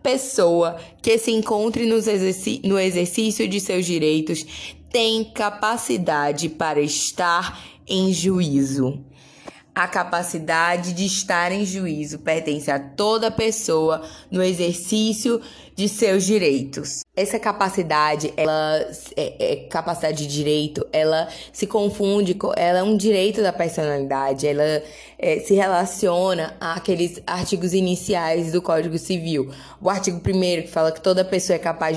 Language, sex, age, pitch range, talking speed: Portuguese, female, 20-39, 155-200 Hz, 125 wpm